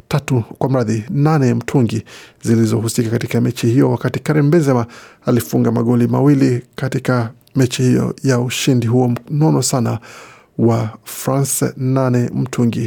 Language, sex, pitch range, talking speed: Swahili, male, 120-140 Hz, 125 wpm